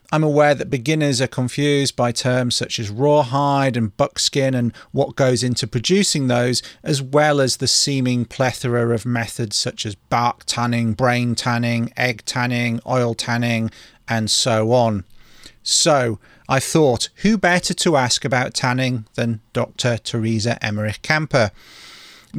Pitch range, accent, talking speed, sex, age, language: 115-140 Hz, British, 145 wpm, male, 40-59, English